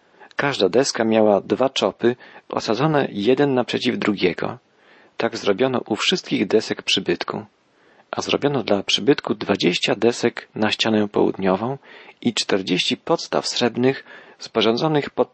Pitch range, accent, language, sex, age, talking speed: 100-125 Hz, native, Polish, male, 40-59, 115 wpm